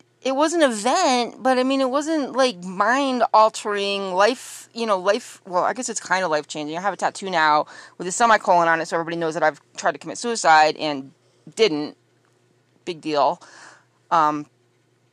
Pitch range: 175-265 Hz